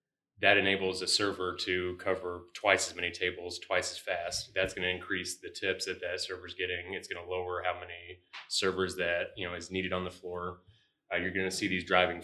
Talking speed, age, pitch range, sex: 220 wpm, 30-49, 90-95 Hz, male